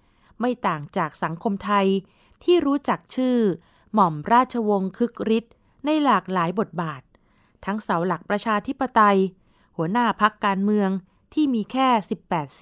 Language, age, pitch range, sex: Thai, 30-49, 180-235 Hz, female